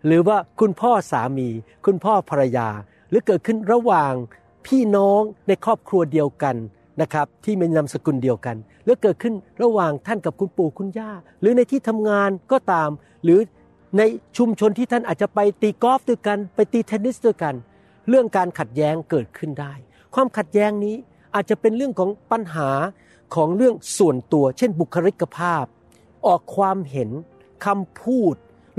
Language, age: Thai, 60-79